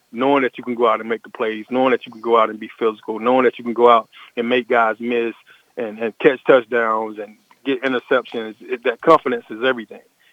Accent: American